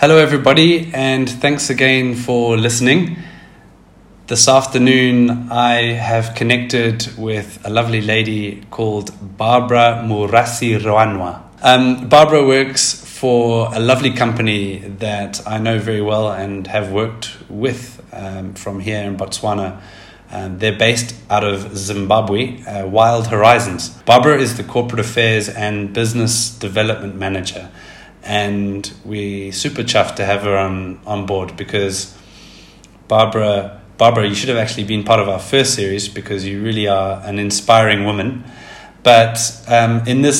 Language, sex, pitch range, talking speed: English, male, 100-120 Hz, 135 wpm